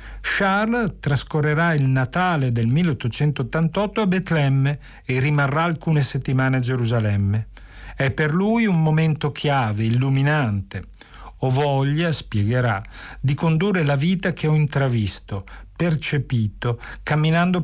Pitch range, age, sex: 120-155 Hz, 50-69, male